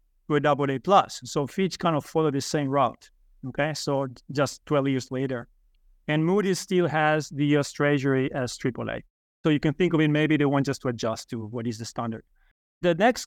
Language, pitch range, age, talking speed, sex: English, 140-170 Hz, 30-49, 210 wpm, male